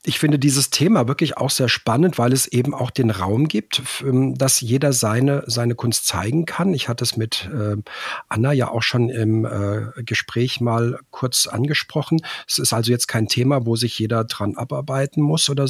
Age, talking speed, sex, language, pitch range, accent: 40-59, 185 wpm, male, German, 115-135 Hz, German